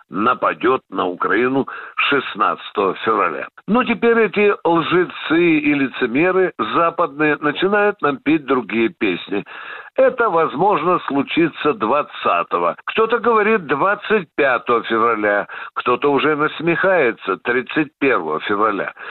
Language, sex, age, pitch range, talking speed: Russian, male, 60-79, 165-235 Hz, 95 wpm